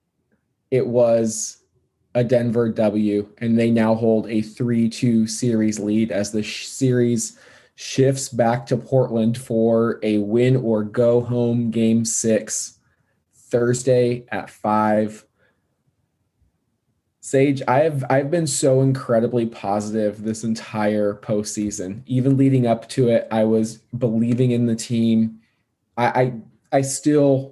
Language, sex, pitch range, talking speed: English, male, 115-130 Hz, 120 wpm